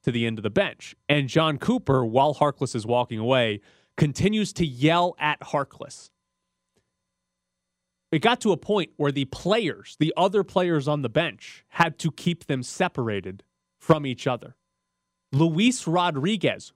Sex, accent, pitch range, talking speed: male, American, 120-175 Hz, 155 wpm